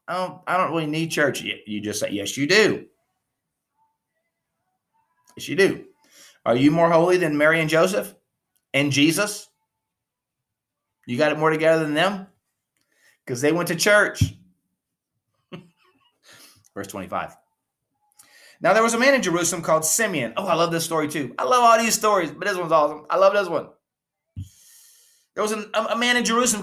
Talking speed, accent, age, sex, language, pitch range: 170 wpm, American, 30-49, male, English, 150-210 Hz